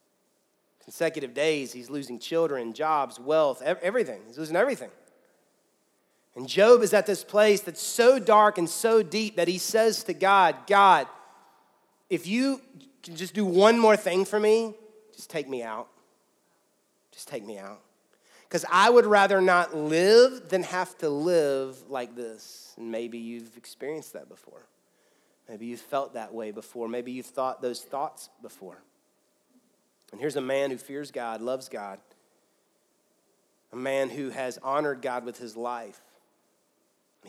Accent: American